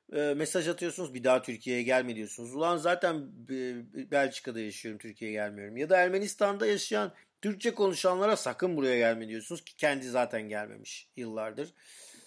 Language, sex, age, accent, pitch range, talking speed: Turkish, male, 40-59, native, 120-165 Hz, 135 wpm